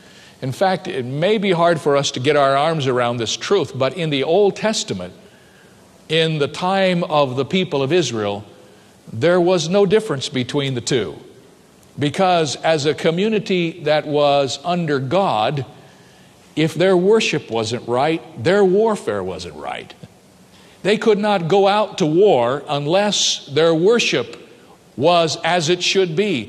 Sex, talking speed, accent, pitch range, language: male, 150 wpm, American, 145-190 Hz, English